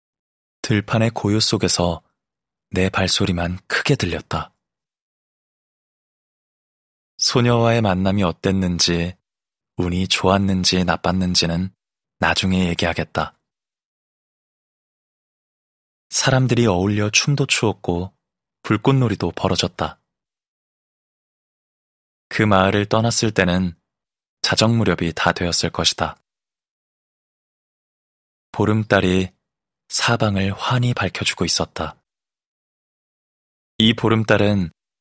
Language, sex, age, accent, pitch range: Korean, male, 20-39, native, 90-110 Hz